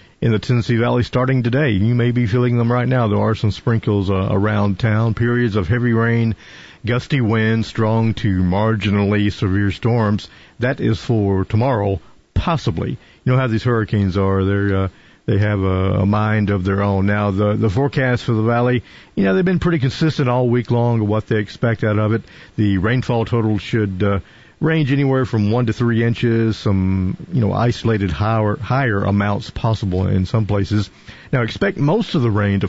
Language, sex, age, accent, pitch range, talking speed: English, male, 50-69, American, 100-125 Hz, 190 wpm